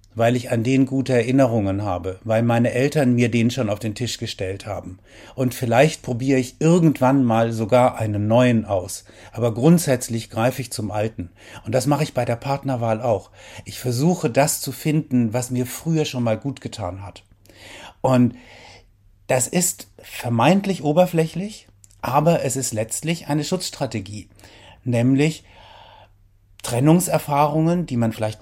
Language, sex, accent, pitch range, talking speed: German, male, German, 110-140 Hz, 150 wpm